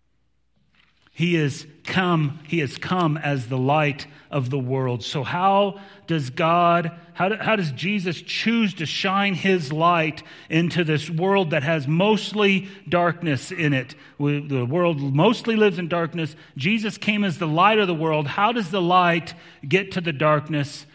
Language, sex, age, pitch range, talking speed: English, male, 40-59, 140-185 Hz, 155 wpm